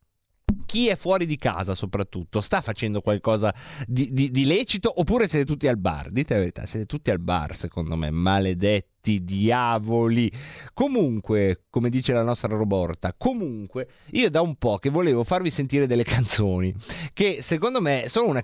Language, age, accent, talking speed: Italian, 30-49, native, 165 wpm